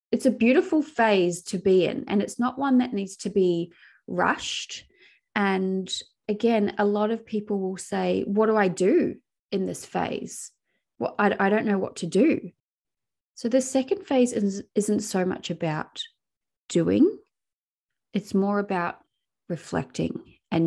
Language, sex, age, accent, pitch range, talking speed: English, female, 20-39, Australian, 170-215 Hz, 155 wpm